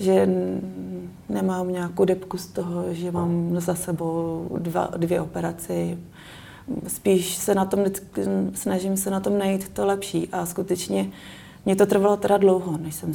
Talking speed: 135 wpm